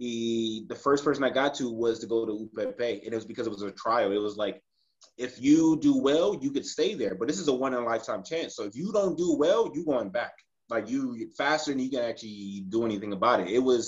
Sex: male